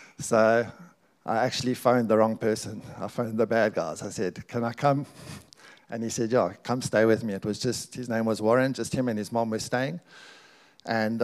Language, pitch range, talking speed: English, 110-125 Hz, 215 wpm